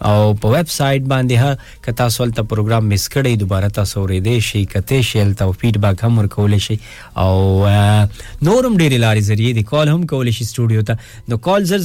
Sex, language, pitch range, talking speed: male, English, 105-125 Hz, 95 wpm